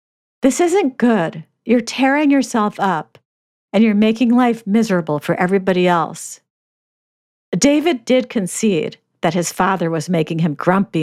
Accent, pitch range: American, 170-225 Hz